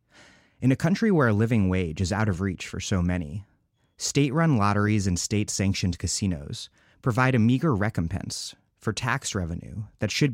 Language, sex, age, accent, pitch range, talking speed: English, male, 30-49, American, 95-125 Hz, 165 wpm